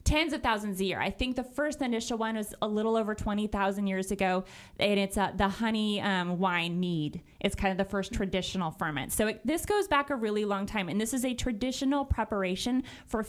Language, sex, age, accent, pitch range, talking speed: English, female, 20-39, American, 185-235 Hz, 220 wpm